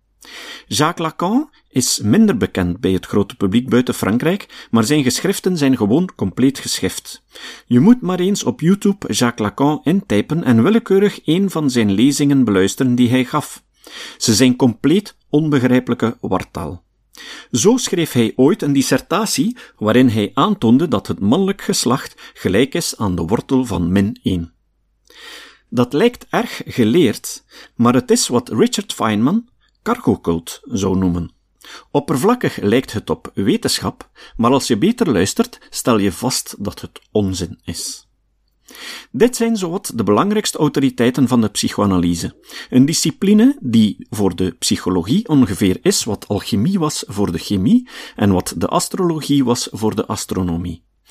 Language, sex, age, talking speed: Dutch, male, 50-69, 145 wpm